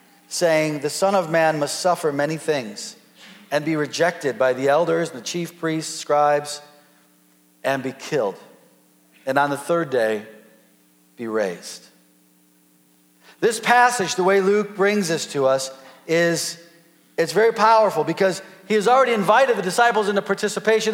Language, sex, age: English, male, 40-59